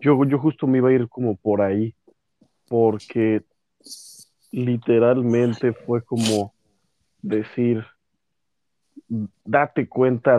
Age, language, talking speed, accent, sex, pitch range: 40-59, Spanish, 100 wpm, Mexican, male, 110-125 Hz